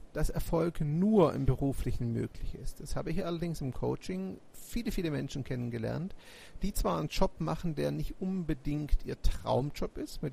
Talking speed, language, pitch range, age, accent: 170 wpm, German, 125-170 Hz, 40-59, German